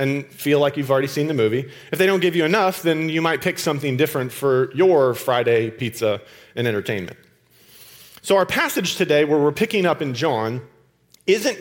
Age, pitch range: 40-59, 135-195 Hz